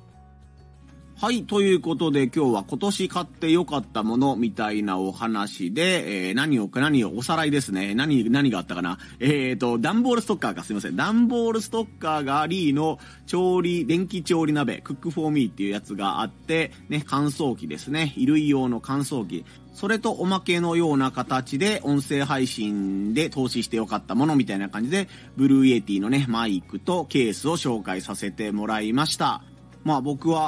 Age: 30-49